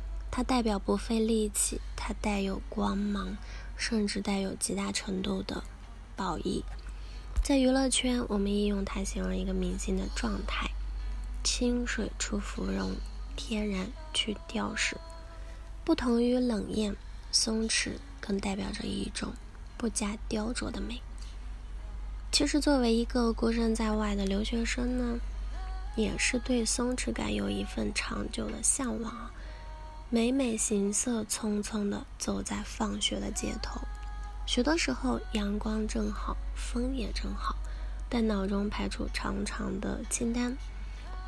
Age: 10-29